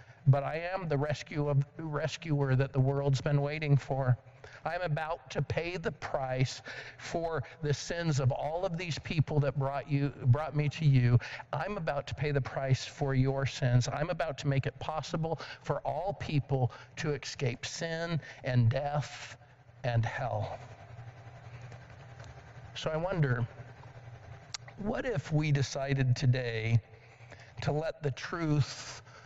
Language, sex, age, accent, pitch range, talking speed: English, male, 50-69, American, 120-145 Hz, 145 wpm